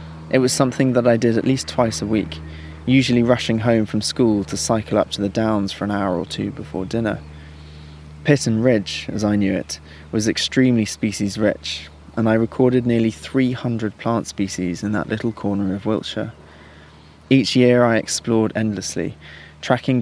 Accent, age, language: British, 20-39, English